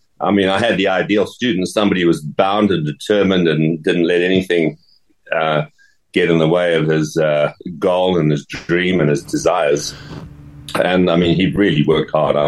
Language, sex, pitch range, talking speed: English, male, 75-100 Hz, 190 wpm